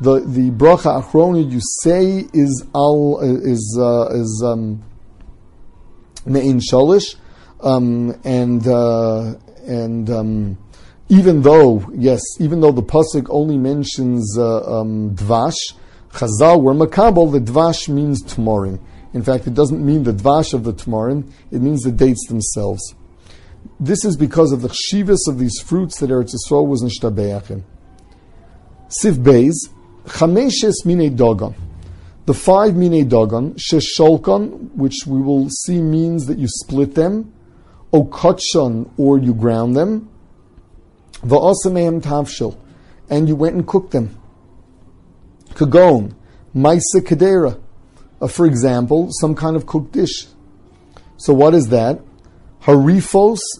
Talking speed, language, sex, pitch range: 130 wpm, English, male, 115-160 Hz